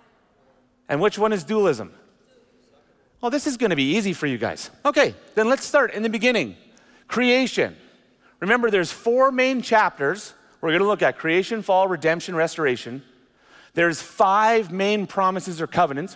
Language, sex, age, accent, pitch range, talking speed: English, male, 30-49, American, 155-225 Hz, 160 wpm